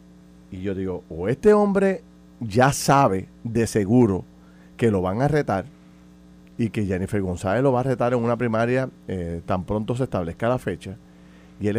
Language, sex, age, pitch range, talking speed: Spanish, male, 40-59, 95-155 Hz, 180 wpm